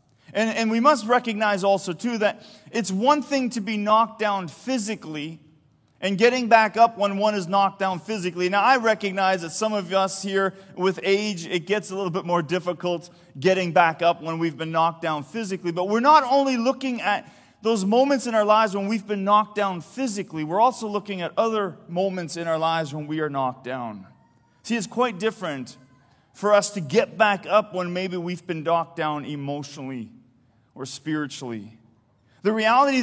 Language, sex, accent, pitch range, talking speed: English, male, American, 175-230 Hz, 190 wpm